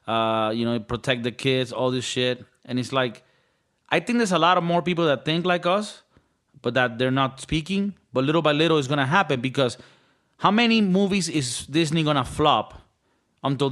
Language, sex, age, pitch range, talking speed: English, male, 30-49, 135-200 Hz, 195 wpm